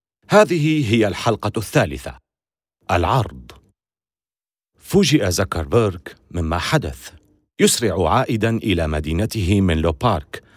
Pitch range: 85-135 Hz